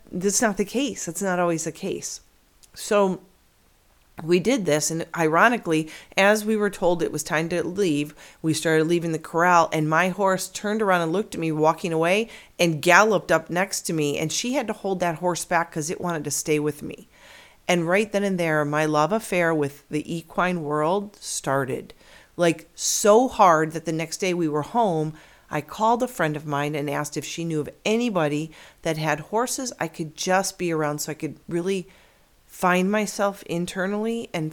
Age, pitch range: 40-59, 150-185 Hz